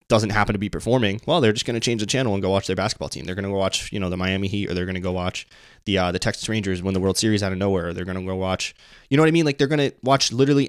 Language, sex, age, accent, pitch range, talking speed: English, male, 20-39, American, 95-105 Hz, 360 wpm